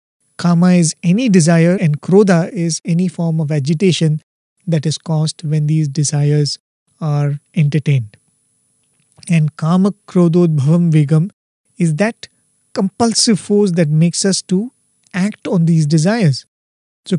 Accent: Indian